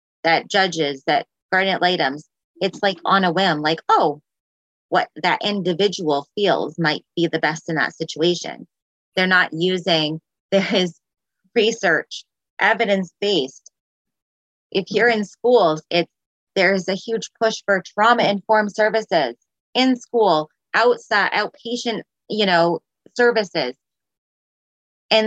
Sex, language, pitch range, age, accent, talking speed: female, English, 170-215 Hz, 20-39, American, 115 wpm